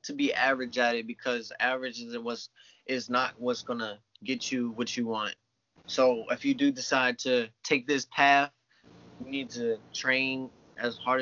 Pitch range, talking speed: 125-150 Hz, 180 wpm